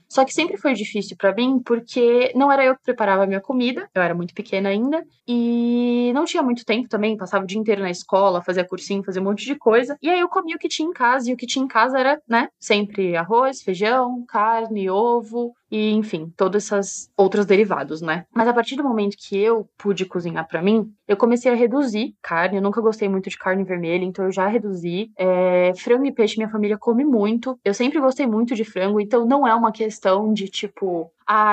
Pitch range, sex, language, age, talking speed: 190-245 Hz, female, Portuguese, 20-39, 225 wpm